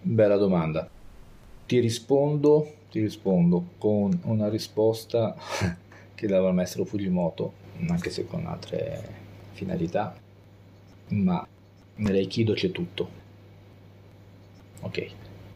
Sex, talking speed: male, 95 wpm